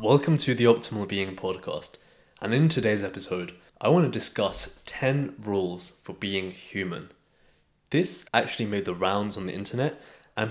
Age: 20-39